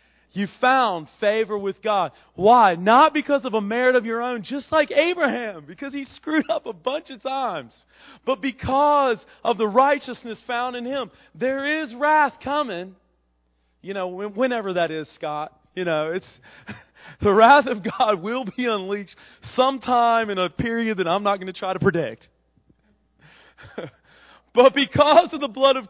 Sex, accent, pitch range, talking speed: male, American, 195-270 Hz, 165 wpm